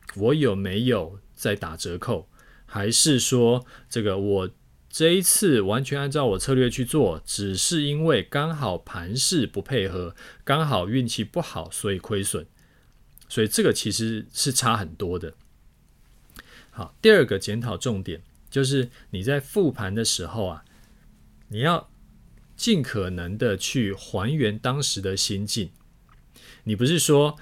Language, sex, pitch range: Chinese, male, 95-135 Hz